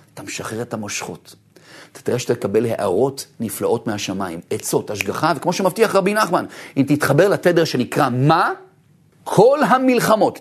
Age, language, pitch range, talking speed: 40-59, Hebrew, 125-165 Hz, 140 wpm